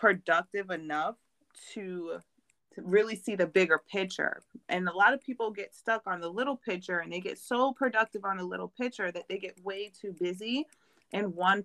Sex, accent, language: female, American, English